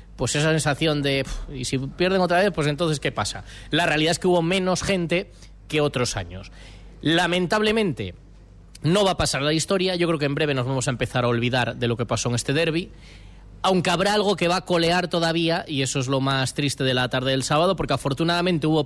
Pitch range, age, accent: 120-170 Hz, 20-39, Spanish